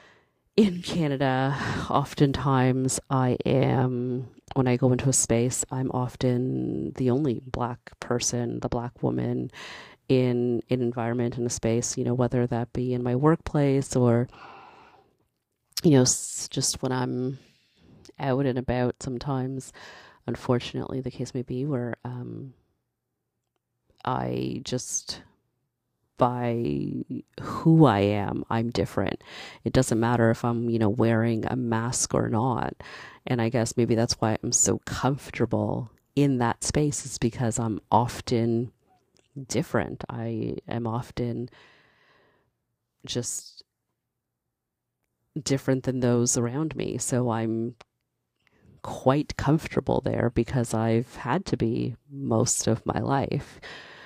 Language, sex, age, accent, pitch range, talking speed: English, female, 30-49, American, 115-130 Hz, 125 wpm